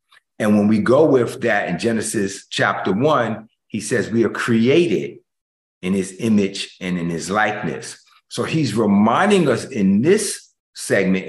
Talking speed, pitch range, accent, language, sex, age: 155 wpm, 100-155 Hz, American, English, male, 50-69